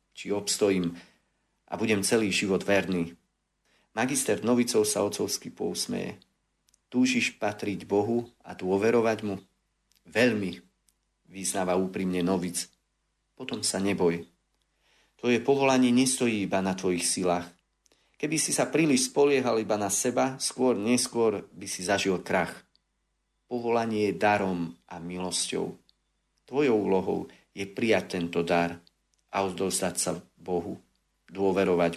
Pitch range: 95-115 Hz